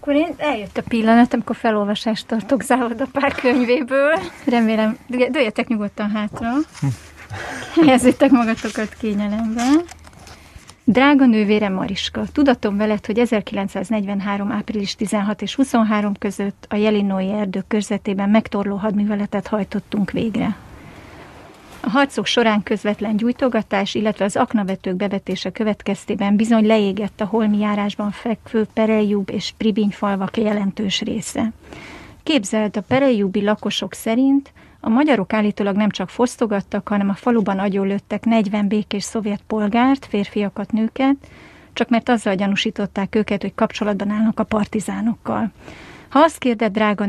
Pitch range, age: 205-235 Hz, 30-49